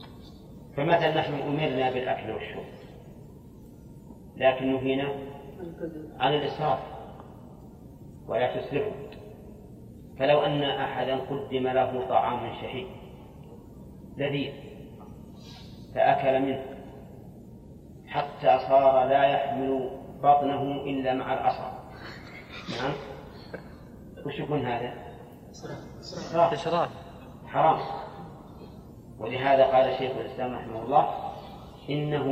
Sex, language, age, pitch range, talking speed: male, Arabic, 30-49, 130-140 Hz, 75 wpm